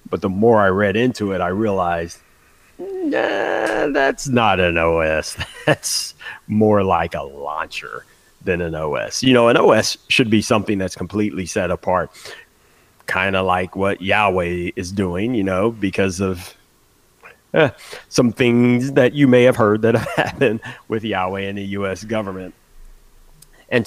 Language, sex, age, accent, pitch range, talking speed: English, male, 30-49, American, 90-110 Hz, 155 wpm